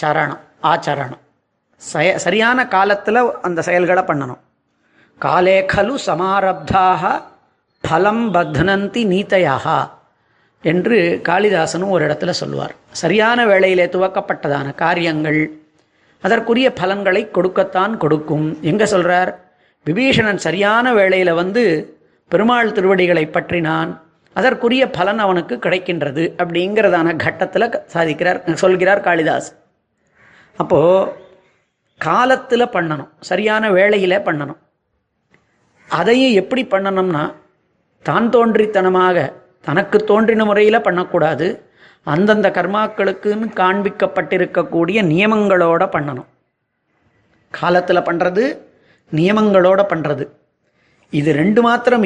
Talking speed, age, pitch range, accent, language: 80 wpm, 30-49, 170-205 Hz, native, Tamil